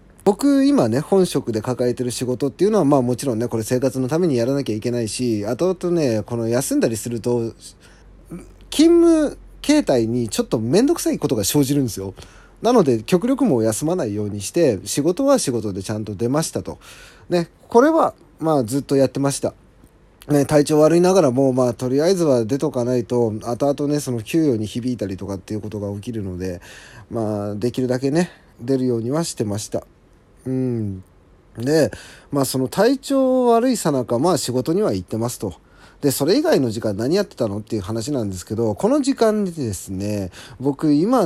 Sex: male